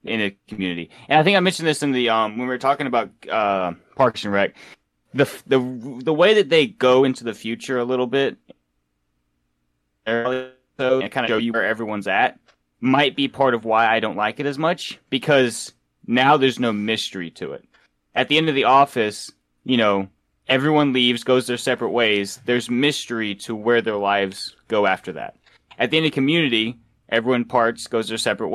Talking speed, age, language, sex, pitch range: 200 wpm, 30-49, English, male, 95-125 Hz